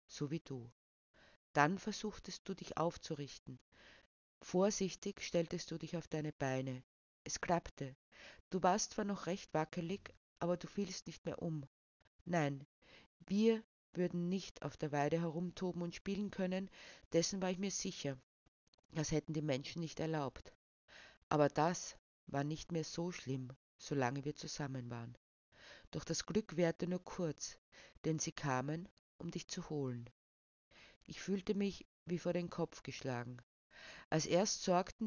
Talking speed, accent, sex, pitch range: 145 wpm, Austrian, female, 150-185 Hz